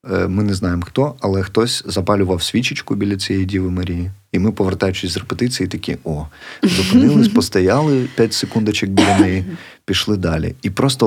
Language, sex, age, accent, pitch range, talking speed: Ukrainian, male, 30-49, native, 95-115 Hz, 155 wpm